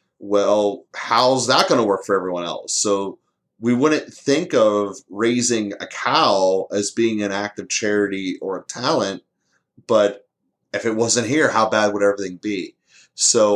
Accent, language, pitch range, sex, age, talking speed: American, English, 100-120 Hz, male, 30-49, 165 wpm